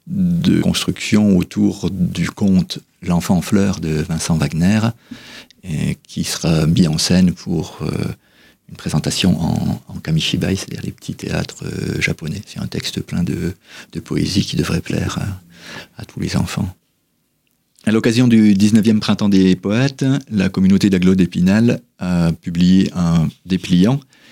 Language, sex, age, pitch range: French, male, 40-59, 90-120 Hz